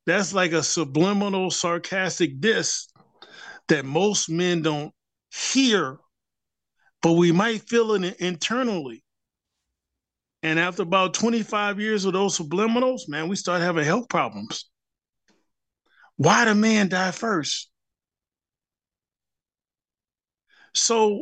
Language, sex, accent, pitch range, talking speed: English, male, American, 165-220 Hz, 105 wpm